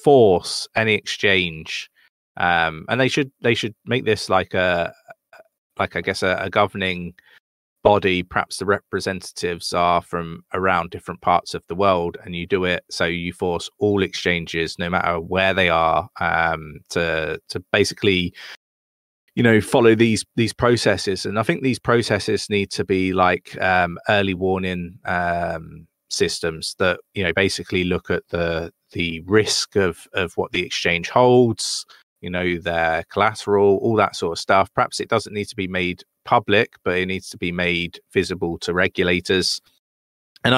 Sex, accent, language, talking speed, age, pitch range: male, British, English, 165 wpm, 20-39, 85-105 Hz